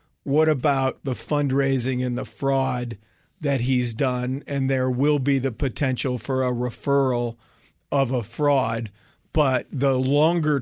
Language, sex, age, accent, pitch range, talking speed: English, male, 40-59, American, 130-145 Hz, 140 wpm